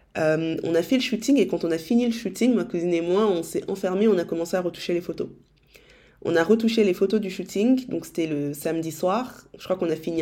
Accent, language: French, French